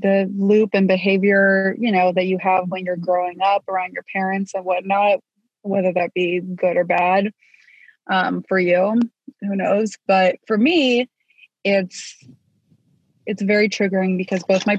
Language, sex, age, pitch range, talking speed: English, female, 20-39, 185-205 Hz, 160 wpm